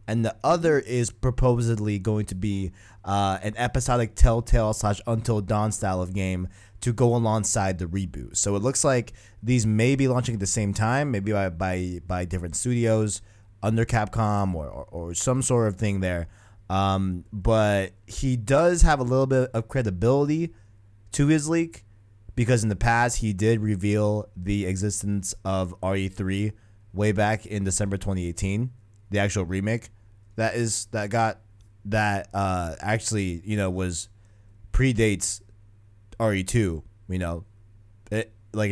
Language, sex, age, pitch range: English, male, 20-39, 100-115 Hz